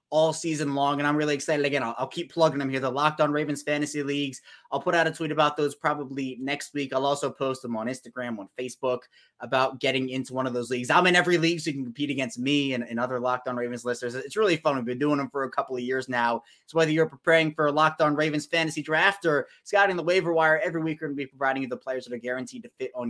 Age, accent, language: 20-39, American, English